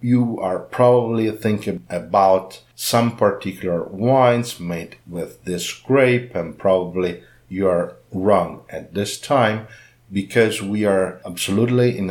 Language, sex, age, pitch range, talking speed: English, male, 50-69, 95-115 Hz, 125 wpm